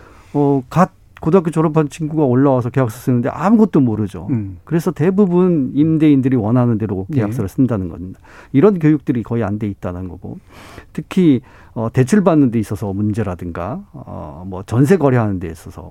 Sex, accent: male, native